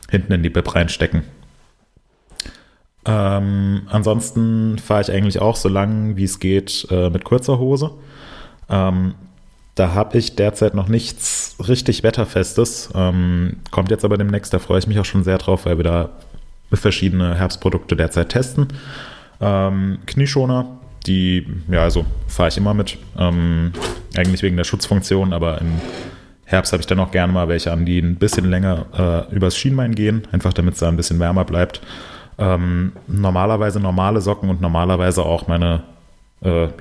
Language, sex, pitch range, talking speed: German, male, 85-105 Hz, 160 wpm